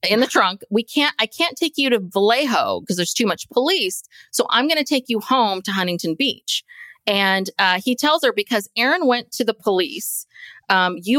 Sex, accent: female, American